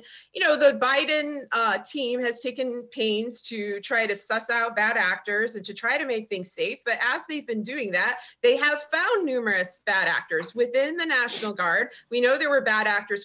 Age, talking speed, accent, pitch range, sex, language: 30-49, 205 wpm, American, 200-265 Hz, female, English